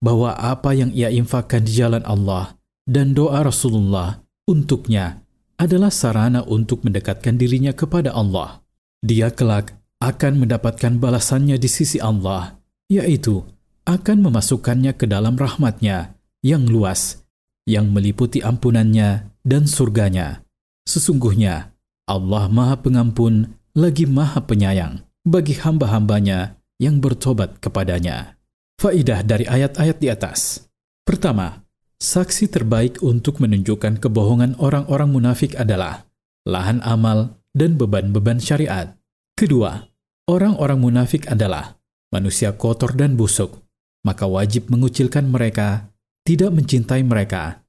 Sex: male